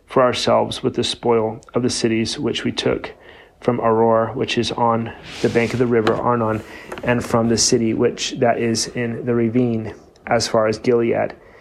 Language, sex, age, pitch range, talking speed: English, male, 30-49, 115-125 Hz, 185 wpm